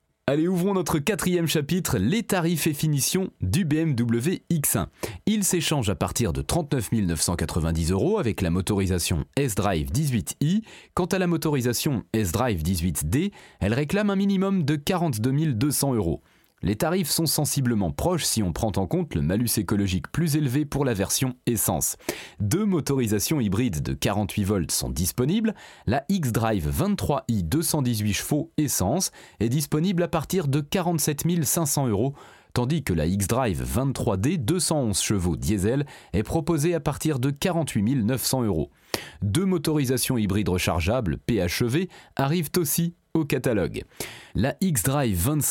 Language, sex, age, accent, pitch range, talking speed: French, male, 30-49, French, 105-165 Hz, 140 wpm